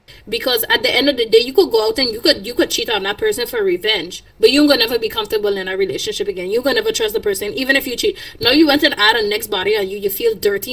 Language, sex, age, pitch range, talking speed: English, female, 20-39, 275-440 Hz, 315 wpm